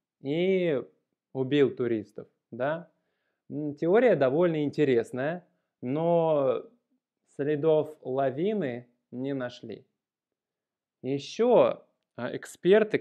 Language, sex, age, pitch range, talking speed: Russian, male, 20-39, 125-175 Hz, 65 wpm